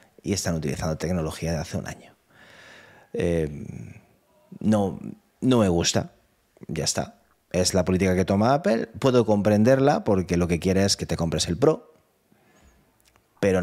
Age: 30-49